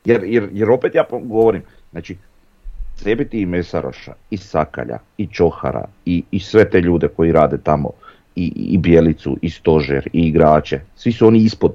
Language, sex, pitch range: Croatian, male, 80-100 Hz